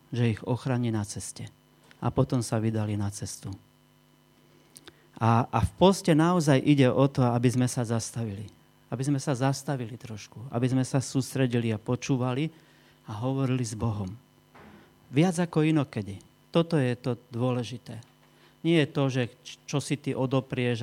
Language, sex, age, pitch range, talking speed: Slovak, male, 40-59, 115-135 Hz, 155 wpm